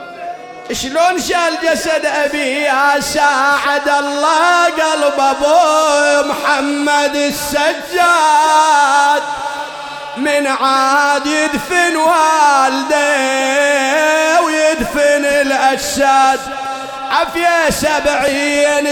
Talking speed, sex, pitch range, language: 60 wpm, male, 265-305 Hz, English